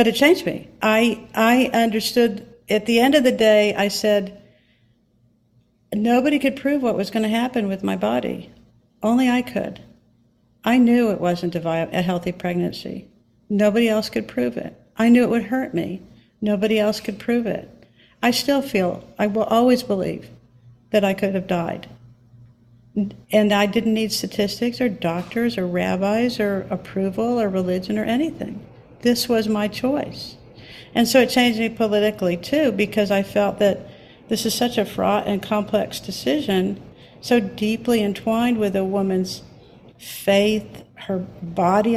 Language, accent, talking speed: English, American, 160 wpm